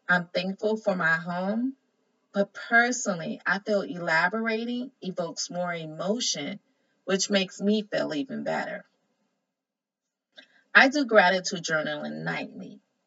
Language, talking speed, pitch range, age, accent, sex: English, 110 wpm, 185-235 Hz, 30-49, American, female